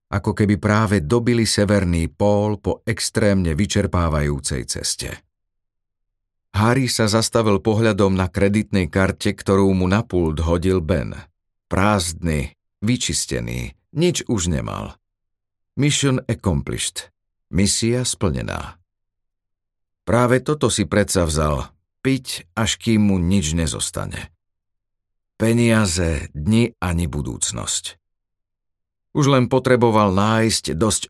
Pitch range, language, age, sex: 90-105 Hz, Slovak, 50-69, male